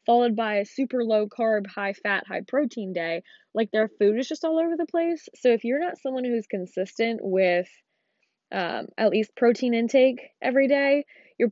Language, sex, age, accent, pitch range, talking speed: English, female, 10-29, American, 190-240 Hz, 190 wpm